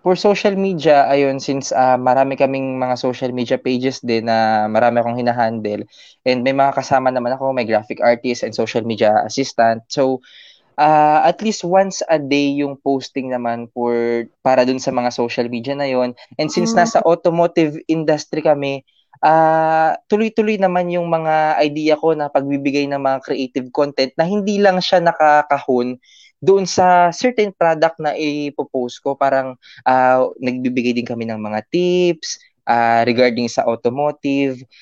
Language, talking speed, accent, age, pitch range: Filipino, 160 wpm, native, 20-39, 120-155 Hz